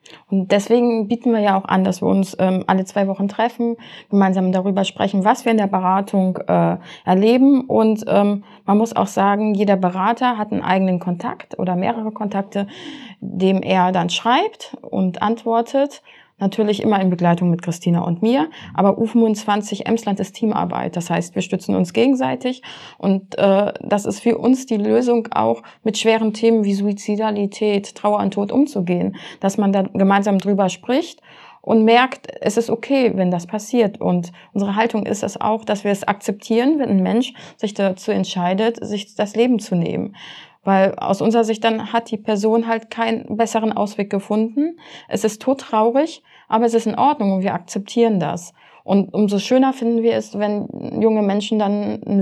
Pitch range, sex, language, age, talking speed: 195-230 Hz, female, German, 20-39, 180 wpm